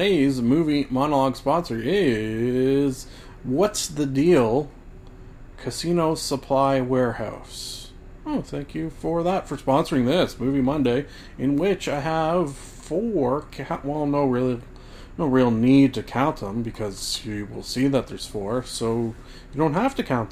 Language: English